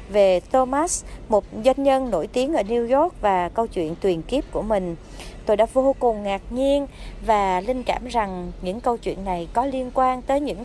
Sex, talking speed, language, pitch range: female, 205 wpm, Vietnamese, 200-265 Hz